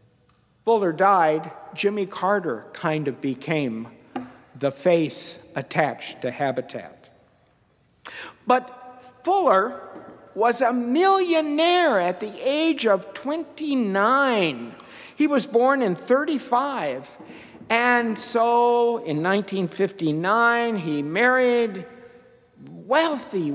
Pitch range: 160-245 Hz